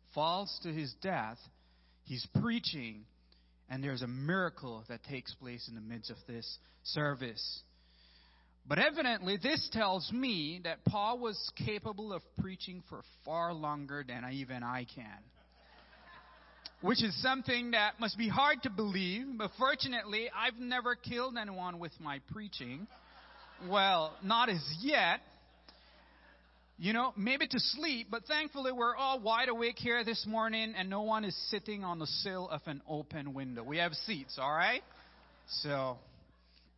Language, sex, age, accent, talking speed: English, male, 30-49, American, 150 wpm